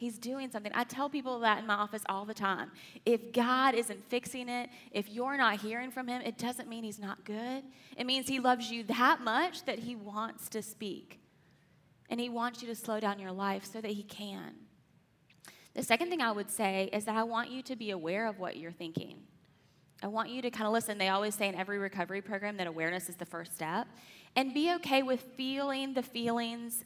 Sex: female